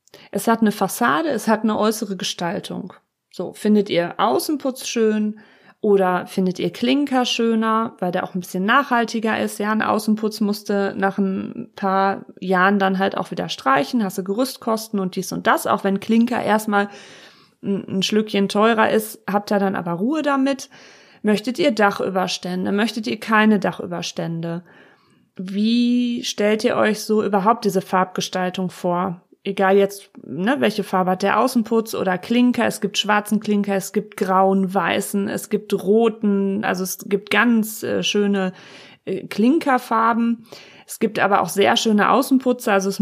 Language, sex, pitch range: German, female, 190-225 Hz